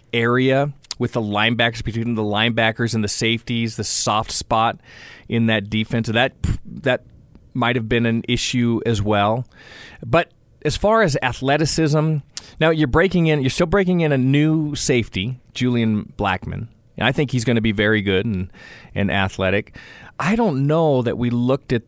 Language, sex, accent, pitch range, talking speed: English, male, American, 105-125 Hz, 170 wpm